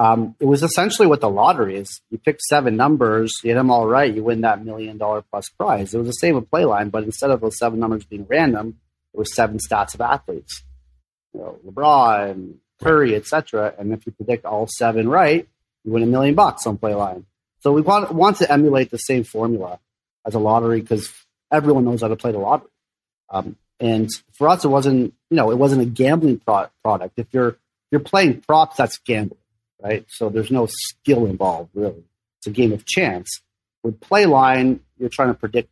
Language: English